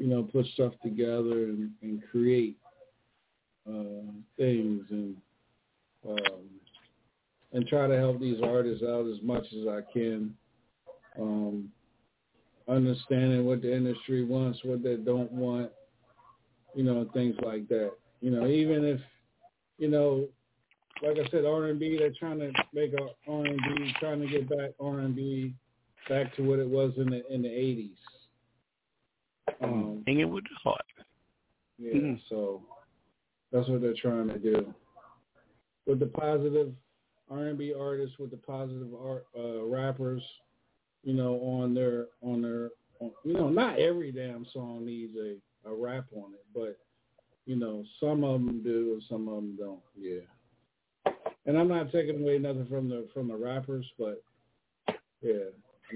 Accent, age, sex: American, 50-69, male